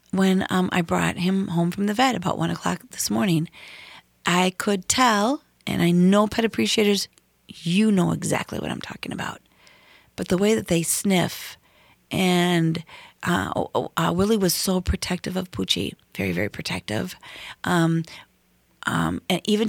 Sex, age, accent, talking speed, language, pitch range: female, 40-59, American, 160 wpm, English, 170-200 Hz